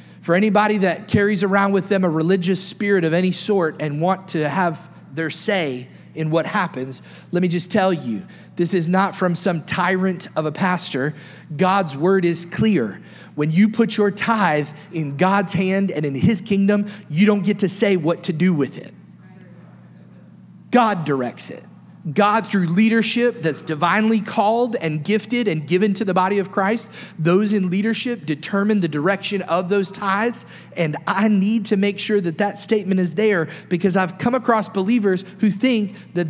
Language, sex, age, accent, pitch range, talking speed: English, male, 30-49, American, 170-210 Hz, 180 wpm